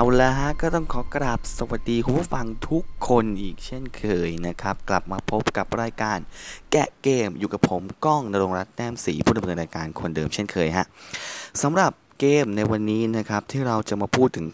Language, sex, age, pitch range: Thai, male, 20-39, 85-115 Hz